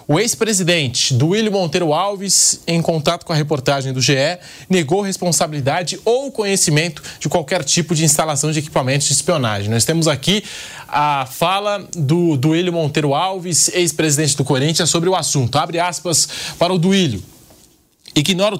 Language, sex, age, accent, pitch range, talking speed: Portuguese, male, 20-39, Brazilian, 140-180 Hz, 150 wpm